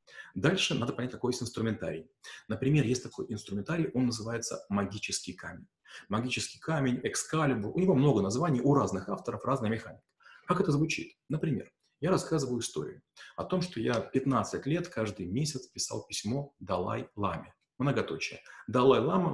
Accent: native